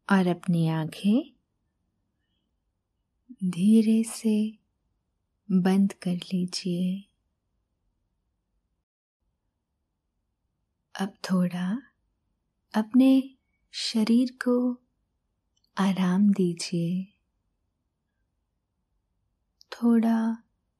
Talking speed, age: 45 wpm, 20-39